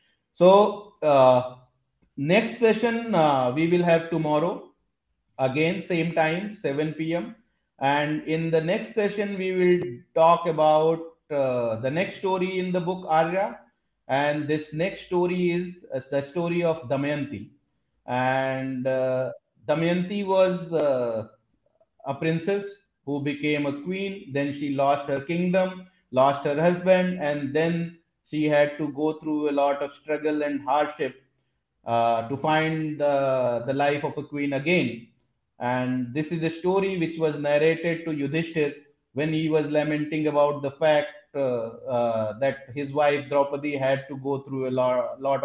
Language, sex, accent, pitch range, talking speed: Hindi, male, native, 140-175 Hz, 150 wpm